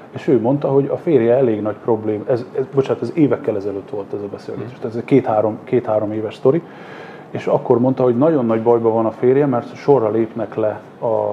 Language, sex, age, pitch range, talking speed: Hungarian, male, 30-49, 110-130 Hz, 210 wpm